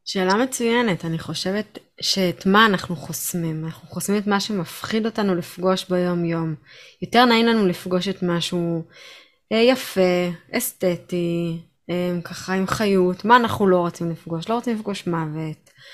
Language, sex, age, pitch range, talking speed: Hebrew, female, 20-39, 175-215 Hz, 140 wpm